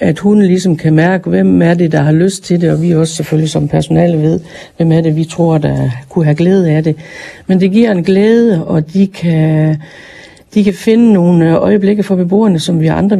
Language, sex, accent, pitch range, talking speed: Danish, female, native, 160-185 Hz, 225 wpm